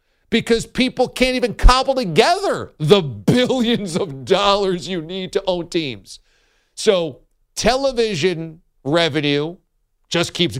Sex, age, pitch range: male, 50-69, 140-235 Hz